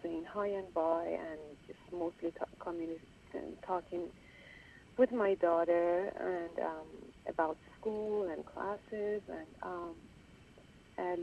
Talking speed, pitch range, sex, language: 110 wpm, 165-205 Hz, female, English